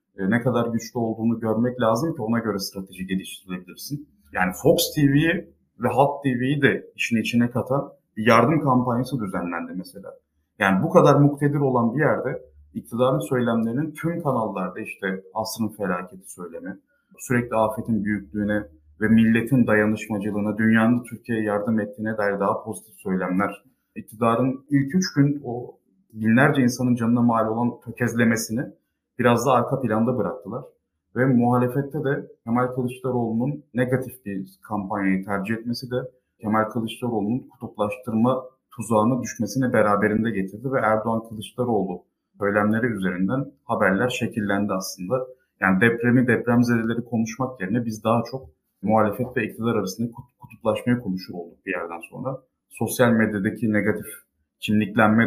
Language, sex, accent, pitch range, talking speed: Turkish, male, native, 105-125 Hz, 130 wpm